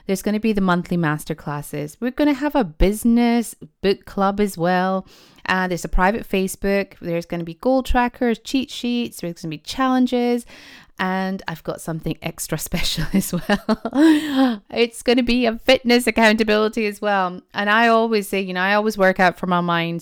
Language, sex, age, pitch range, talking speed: English, female, 20-39, 170-210 Hz, 200 wpm